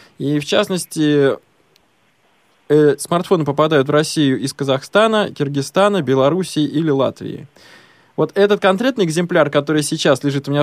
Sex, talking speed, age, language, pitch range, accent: male, 130 wpm, 20-39, Russian, 140-180 Hz, native